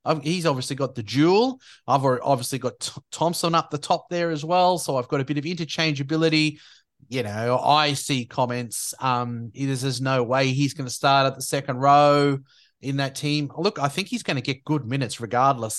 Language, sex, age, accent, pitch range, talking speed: English, male, 30-49, Australian, 130-170 Hz, 200 wpm